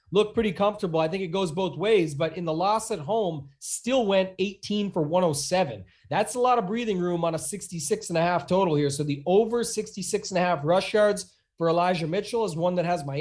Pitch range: 170-210 Hz